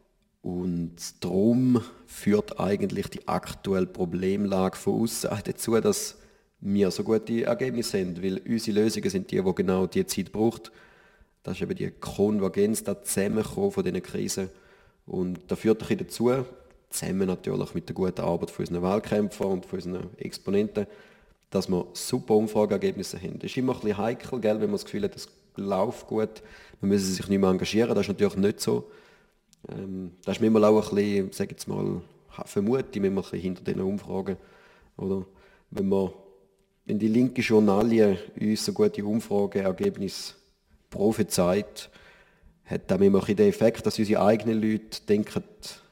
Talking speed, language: 150 wpm, German